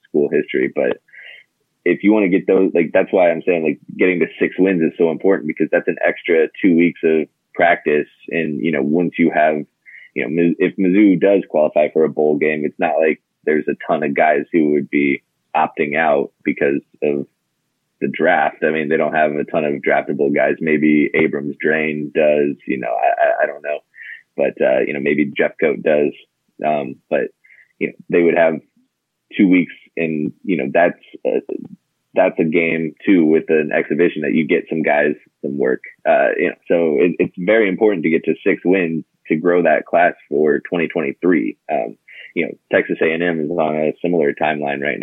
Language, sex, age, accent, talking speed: English, male, 20-39, American, 190 wpm